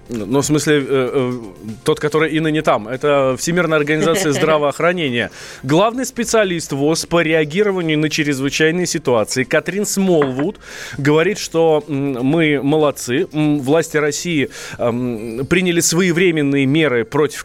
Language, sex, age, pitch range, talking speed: Russian, male, 20-39, 125-165 Hz, 110 wpm